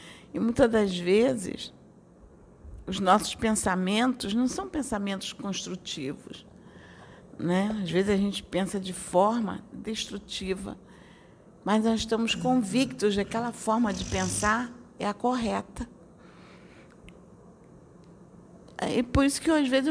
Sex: female